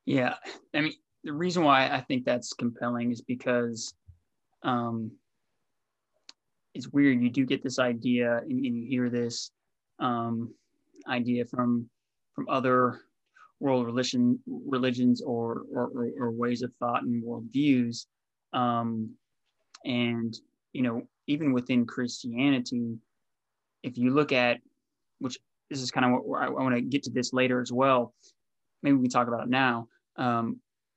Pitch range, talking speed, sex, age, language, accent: 120-135 Hz, 150 wpm, male, 20-39, English, American